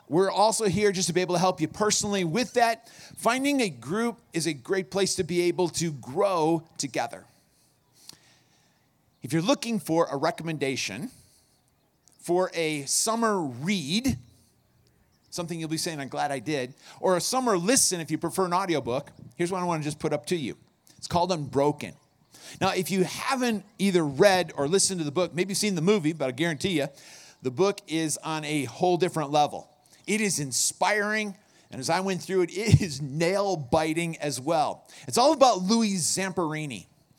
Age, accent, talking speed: 40-59, American, 180 wpm